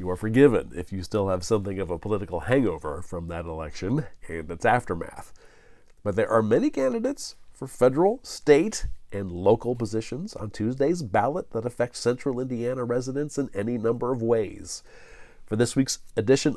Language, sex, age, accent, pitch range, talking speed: English, male, 40-59, American, 100-135 Hz, 165 wpm